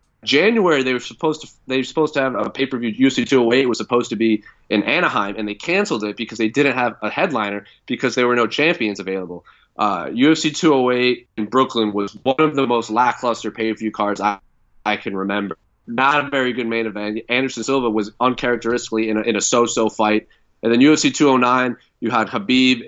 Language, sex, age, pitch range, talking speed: English, male, 30-49, 110-130 Hz, 200 wpm